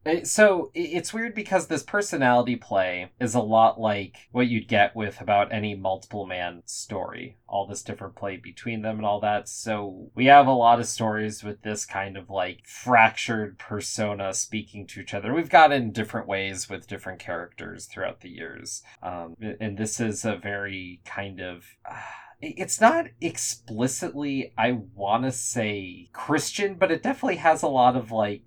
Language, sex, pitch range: English, male, 100-130 Hz